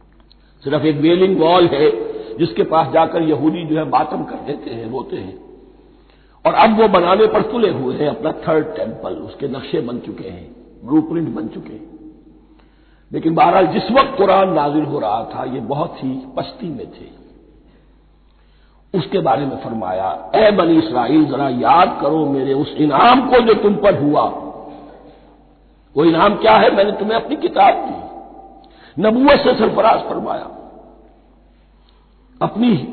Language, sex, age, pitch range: Hindi, male, 60-79, 180-270 Hz